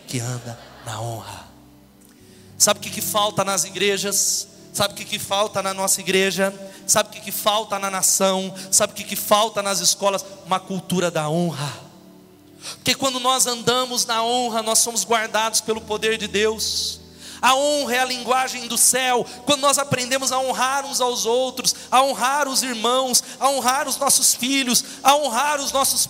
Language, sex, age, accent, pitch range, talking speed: Portuguese, male, 30-49, Brazilian, 170-245 Hz, 170 wpm